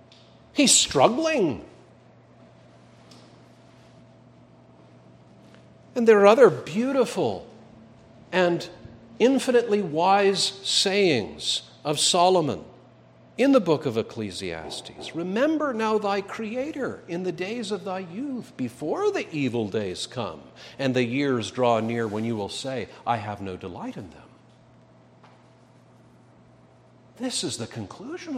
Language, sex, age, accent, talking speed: English, male, 50-69, American, 110 wpm